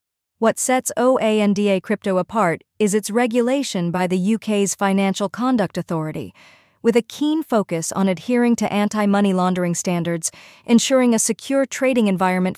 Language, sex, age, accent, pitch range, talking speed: English, female, 40-59, American, 180-220 Hz, 140 wpm